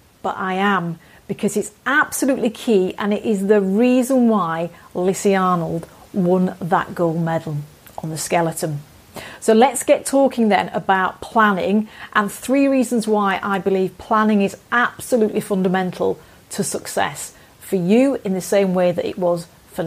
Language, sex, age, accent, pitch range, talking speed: English, female, 40-59, British, 185-240 Hz, 155 wpm